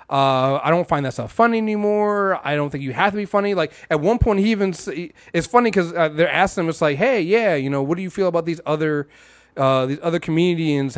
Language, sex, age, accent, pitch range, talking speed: English, male, 30-49, American, 140-205 Hz, 255 wpm